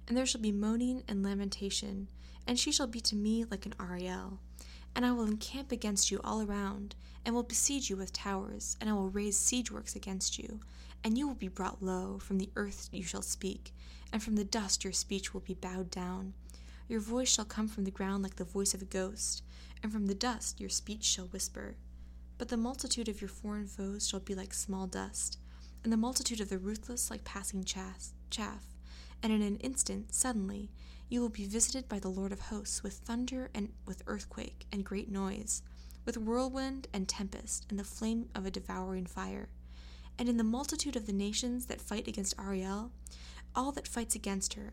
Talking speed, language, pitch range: 205 wpm, English, 185-225 Hz